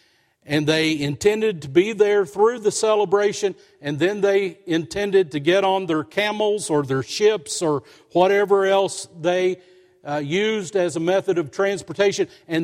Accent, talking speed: American, 155 wpm